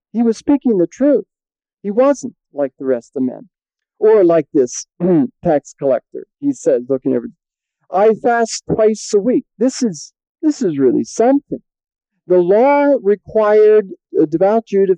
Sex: male